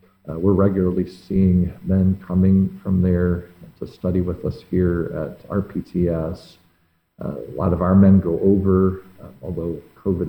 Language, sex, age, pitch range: English, male, 50-69, 85-100 Hz